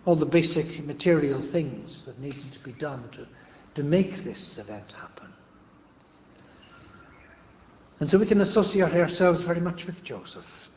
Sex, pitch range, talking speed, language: male, 130-170 Hz, 145 wpm, English